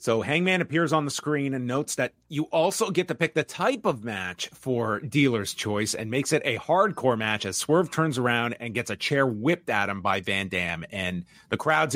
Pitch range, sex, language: 115-160 Hz, male, English